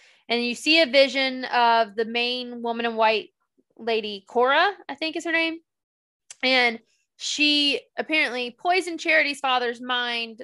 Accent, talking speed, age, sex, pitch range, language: American, 145 wpm, 20-39, female, 230-290 Hz, English